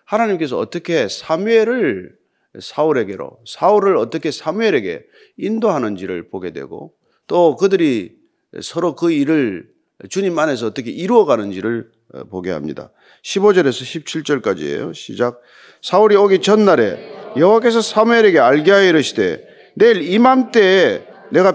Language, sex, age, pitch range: Korean, male, 40-59, 150-225 Hz